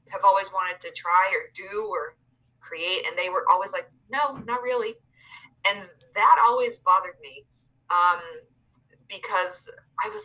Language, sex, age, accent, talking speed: English, female, 20-39, American, 150 wpm